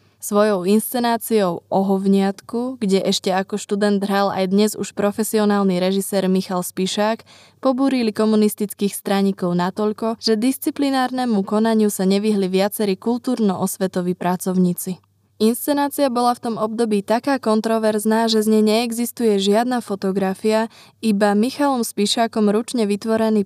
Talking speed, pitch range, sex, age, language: 115 wpm, 190-225 Hz, female, 20-39, Slovak